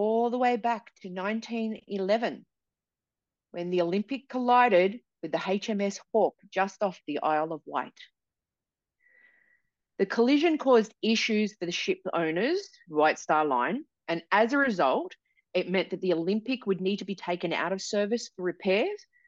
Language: English